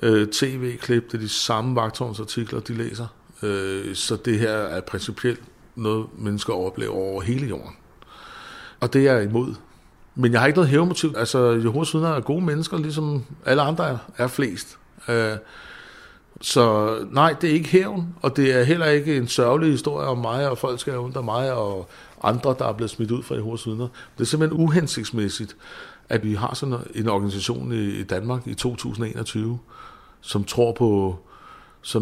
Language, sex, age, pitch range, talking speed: Danish, male, 60-79, 110-135 Hz, 165 wpm